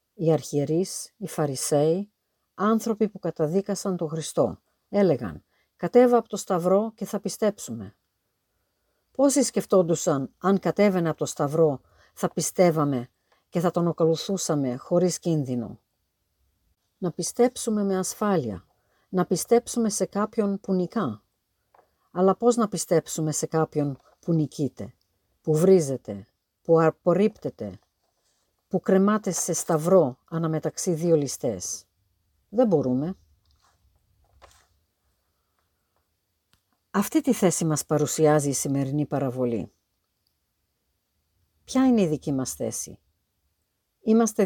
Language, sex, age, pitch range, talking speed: Greek, female, 50-69, 115-185 Hz, 105 wpm